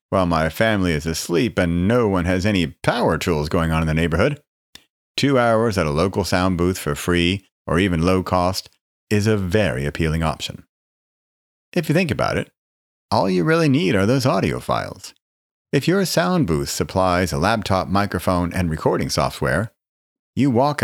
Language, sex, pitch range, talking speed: English, male, 80-115 Hz, 175 wpm